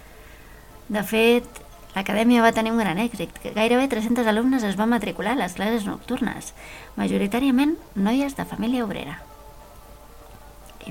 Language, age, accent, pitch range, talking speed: Spanish, 30-49, Spanish, 170-230 Hz, 130 wpm